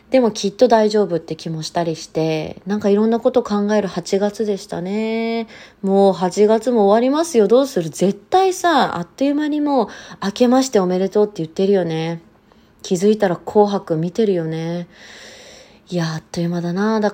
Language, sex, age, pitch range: Japanese, female, 30-49, 175-220 Hz